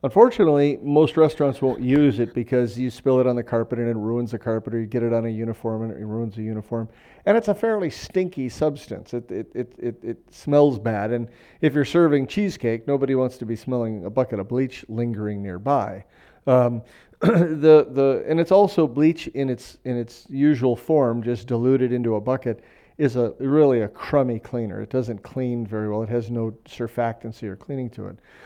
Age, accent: 40-59, American